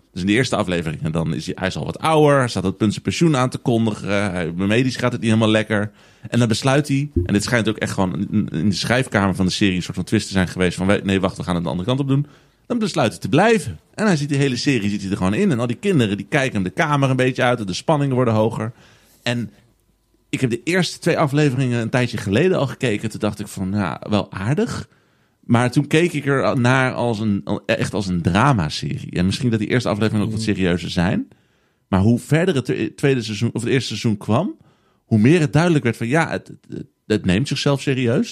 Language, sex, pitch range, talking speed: Dutch, male, 105-160 Hz, 250 wpm